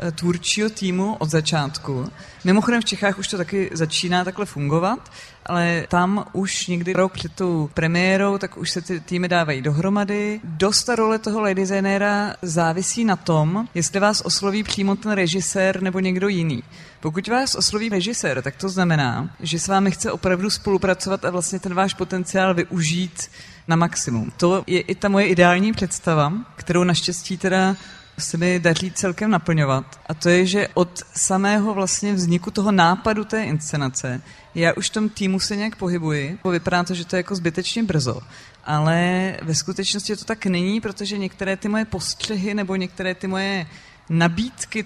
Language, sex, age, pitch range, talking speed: Czech, female, 30-49, 170-200 Hz, 165 wpm